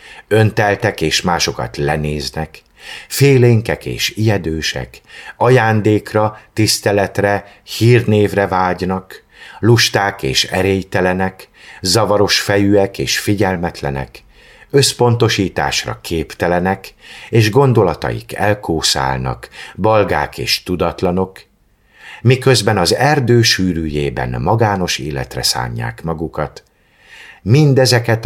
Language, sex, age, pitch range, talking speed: Hungarian, male, 50-69, 75-110 Hz, 75 wpm